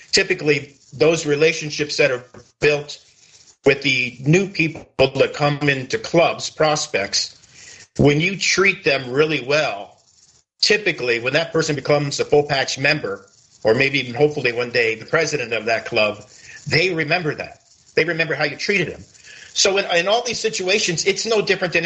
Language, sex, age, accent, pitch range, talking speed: English, male, 50-69, American, 135-180 Hz, 160 wpm